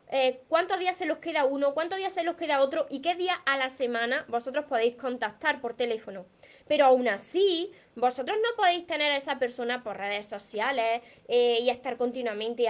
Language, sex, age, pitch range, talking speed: Spanish, female, 20-39, 235-325 Hz, 195 wpm